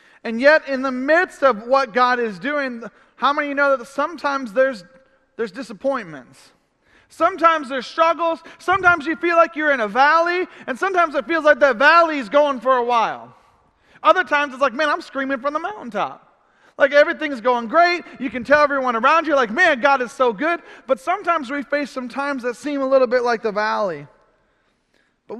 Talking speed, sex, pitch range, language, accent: 195 wpm, male, 245-305 Hz, English, American